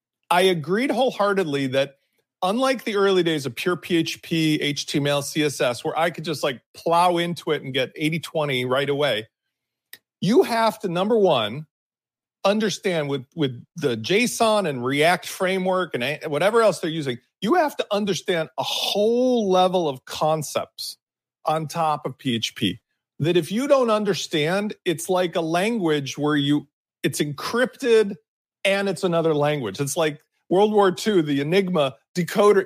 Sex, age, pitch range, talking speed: male, 40-59, 150-200 Hz, 150 wpm